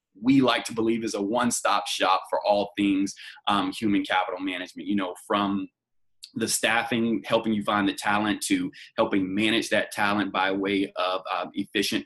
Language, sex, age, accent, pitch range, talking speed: English, male, 20-39, American, 100-125 Hz, 175 wpm